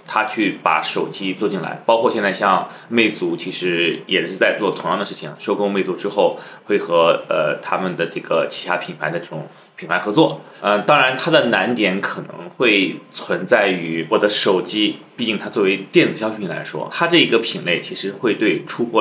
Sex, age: male, 30-49